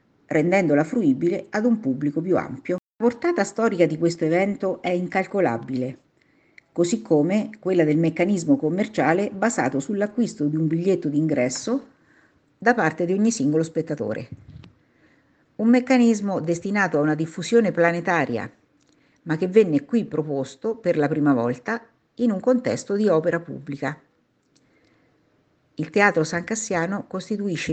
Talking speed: 130 wpm